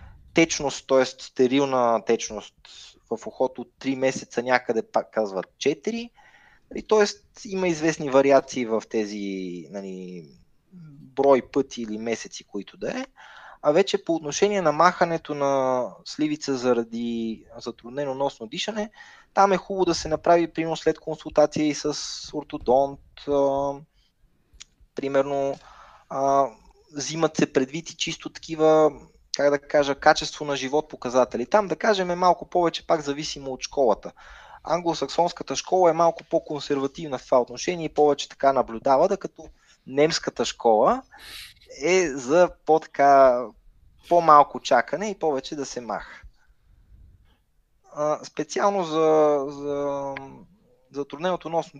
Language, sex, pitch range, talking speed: Bulgarian, male, 130-165 Hz, 120 wpm